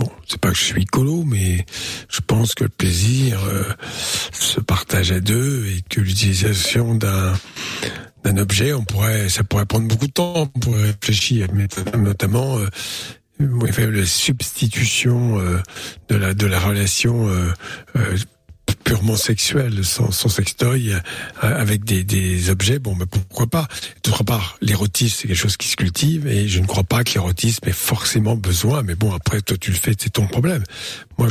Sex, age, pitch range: male, 60-79, 95-120 Hz